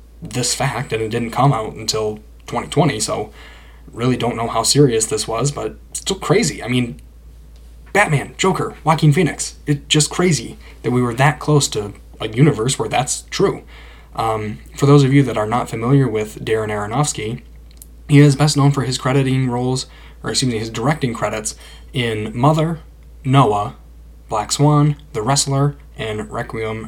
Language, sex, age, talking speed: English, male, 10-29, 165 wpm